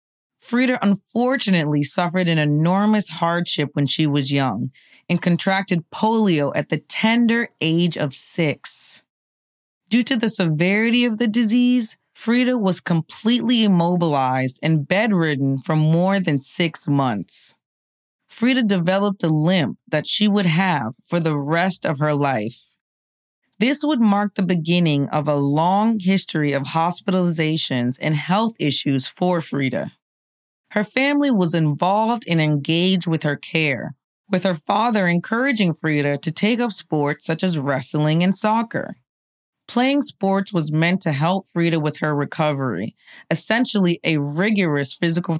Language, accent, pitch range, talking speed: English, American, 150-205 Hz, 135 wpm